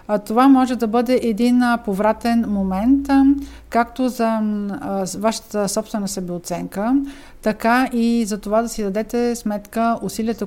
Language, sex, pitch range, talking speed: Bulgarian, female, 200-240 Hz, 120 wpm